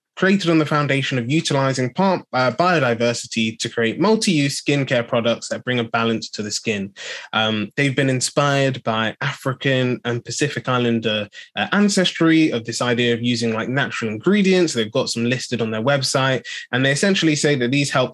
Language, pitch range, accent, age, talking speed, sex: English, 115-150 Hz, British, 20-39, 170 wpm, male